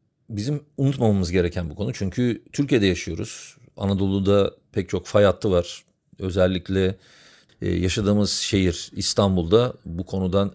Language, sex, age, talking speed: Turkish, male, 40-59, 115 wpm